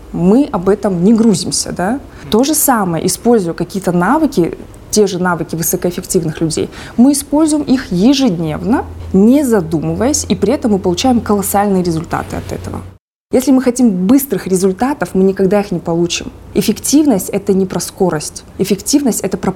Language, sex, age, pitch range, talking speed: Russian, female, 20-39, 185-240 Hz, 150 wpm